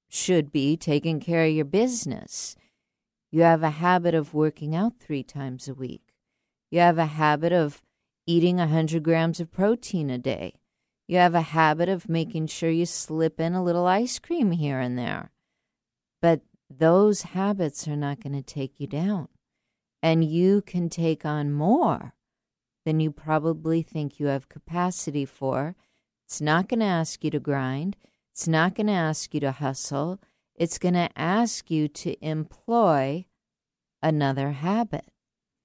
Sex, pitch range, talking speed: female, 150-185 Hz, 160 wpm